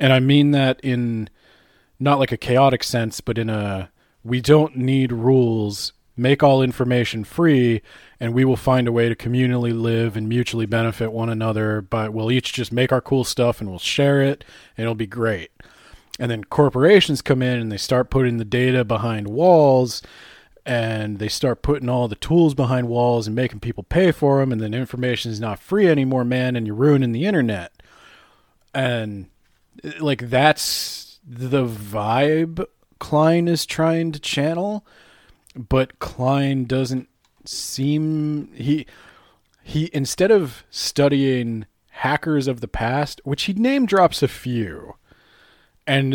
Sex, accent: male, American